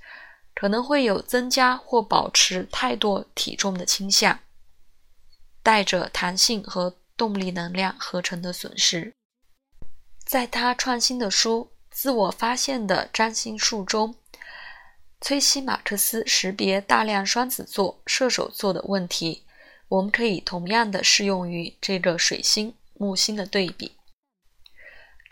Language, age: Chinese, 20-39